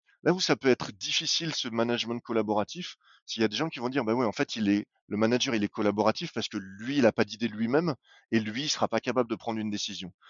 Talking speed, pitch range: 280 wpm, 110-140 Hz